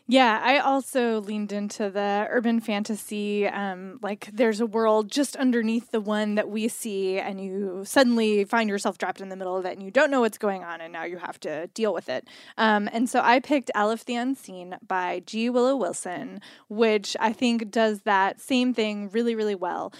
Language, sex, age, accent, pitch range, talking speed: English, female, 20-39, American, 205-245 Hz, 205 wpm